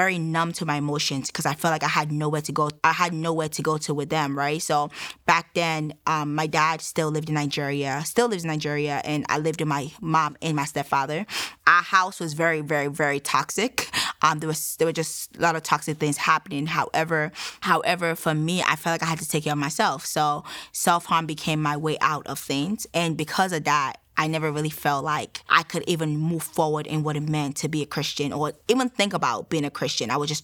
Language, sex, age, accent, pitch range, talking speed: English, female, 20-39, American, 150-170 Hz, 235 wpm